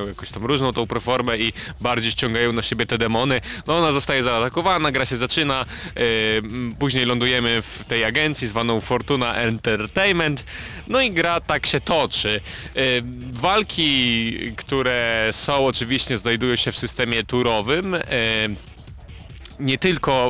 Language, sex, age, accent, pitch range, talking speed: Polish, male, 30-49, native, 115-140 Hz, 130 wpm